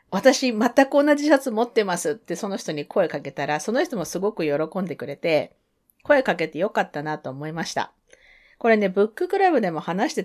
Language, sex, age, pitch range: Japanese, female, 40-59, 155-245 Hz